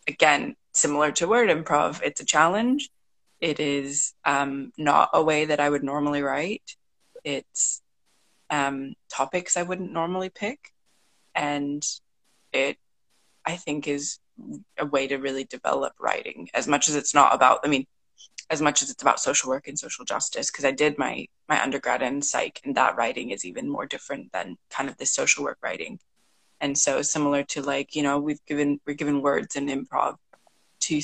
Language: English